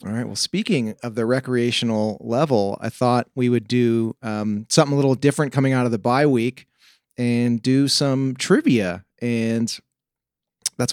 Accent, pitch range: American, 110-140 Hz